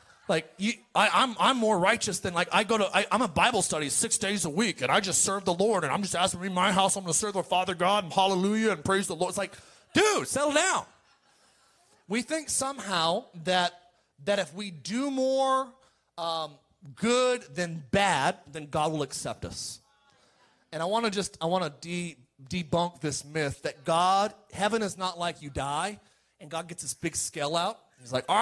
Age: 30-49